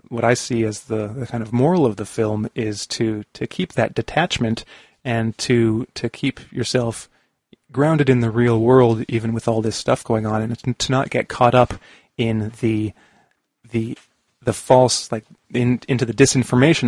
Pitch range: 115-130 Hz